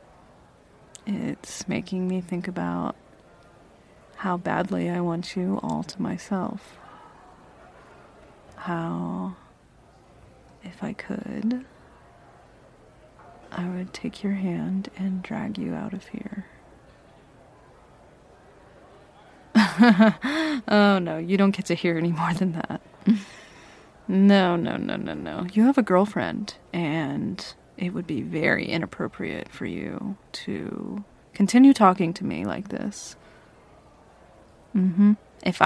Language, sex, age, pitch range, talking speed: English, female, 30-49, 180-220 Hz, 110 wpm